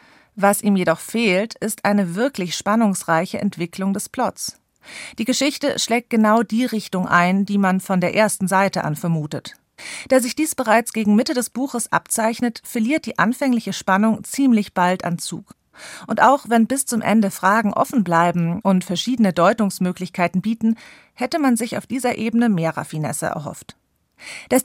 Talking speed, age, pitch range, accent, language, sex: 160 wpm, 40-59, 180-225 Hz, German, German, female